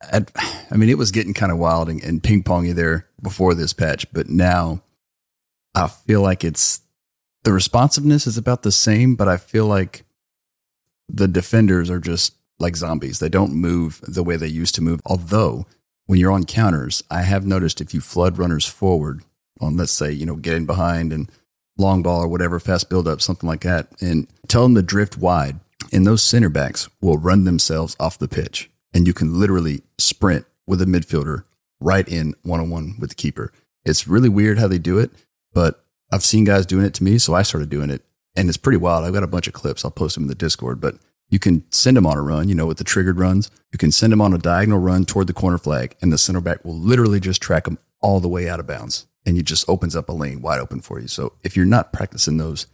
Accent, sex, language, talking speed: American, male, English, 230 wpm